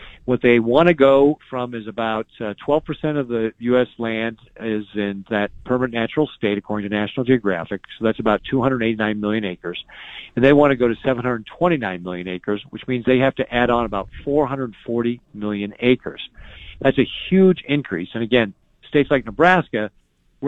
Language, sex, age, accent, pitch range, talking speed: English, male, 50-69, American, 105-130 Hz, 175 wpm